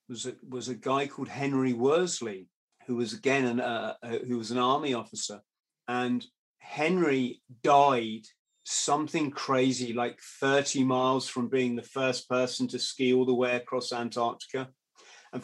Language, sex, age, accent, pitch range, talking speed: English, male, 30-49, British, 125-150 Hz, 155 wpm